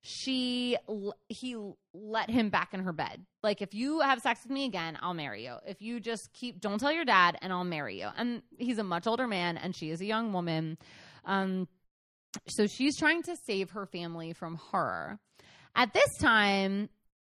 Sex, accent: female, American